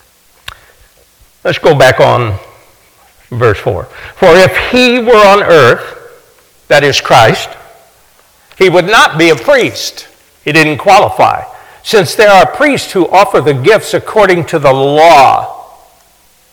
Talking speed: 130 wpm